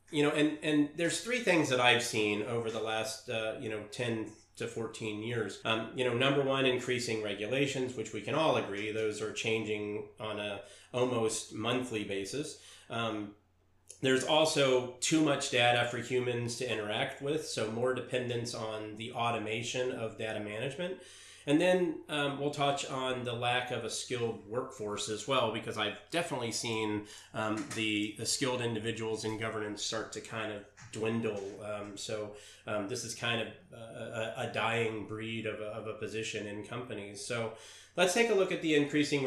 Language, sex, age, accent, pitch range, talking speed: English, male, 30-49, American, 110-125 Hz, 175 wpm